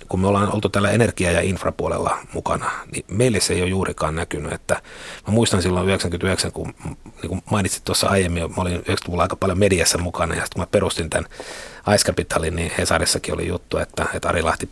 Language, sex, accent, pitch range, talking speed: Finnish, male, native, 90-110 Hz, 195 wpm